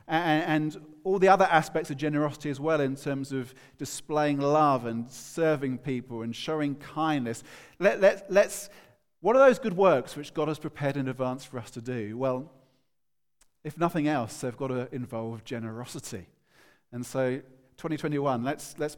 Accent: British